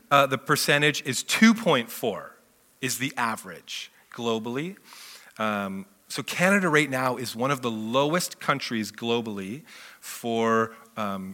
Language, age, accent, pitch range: English, 30-49, American, 115-145 Hz